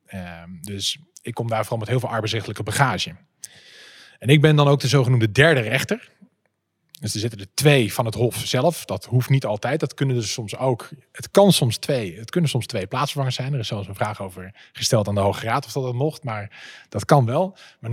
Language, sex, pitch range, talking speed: Dutch, male, 110-150 Hz, 230 wpm